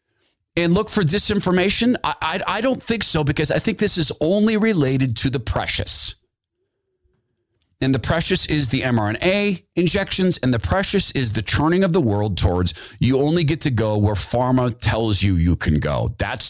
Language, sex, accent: English, male, American